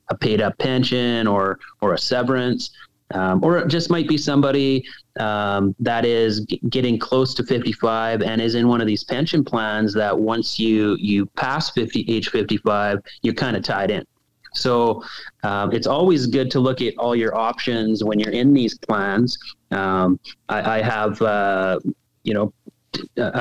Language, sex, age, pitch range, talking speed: English, male, 30-49, 105-125 Hz, 175 wpm